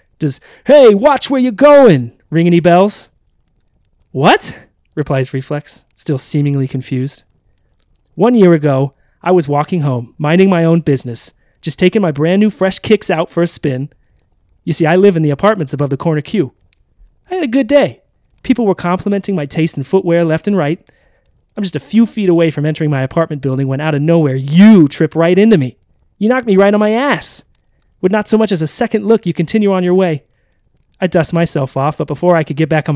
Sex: male